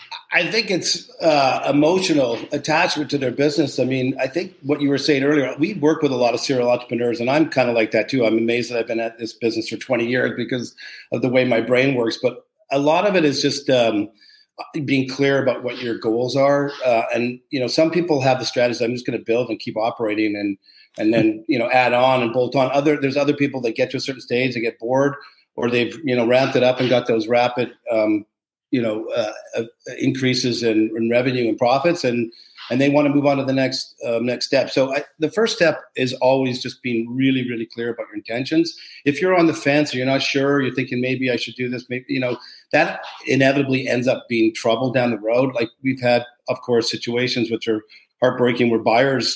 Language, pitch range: English, 115-140 Hz